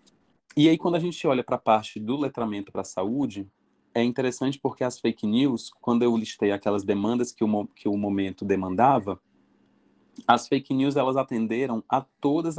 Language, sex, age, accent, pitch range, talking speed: Portuguese, male, 30-49, Brazilian, 110-135 Hz, 185 wpm